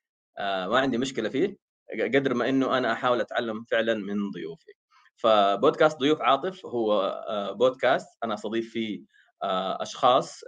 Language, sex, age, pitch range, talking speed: Arabic, male, 20-39, 105-150 Hz, 145 wpm